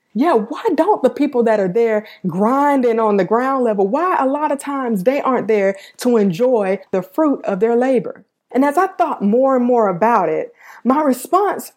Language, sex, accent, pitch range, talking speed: English, female, American, 205-275 Hz, 200 wpm